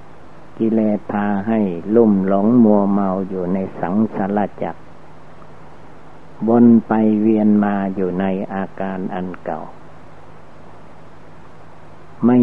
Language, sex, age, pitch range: Thai, male, 60-79, 95-110 Hz